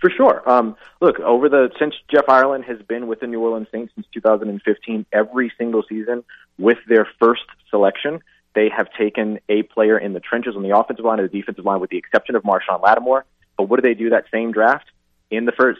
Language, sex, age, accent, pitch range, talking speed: English, male, 30-49, American, 100-115 Hz, 220 wpm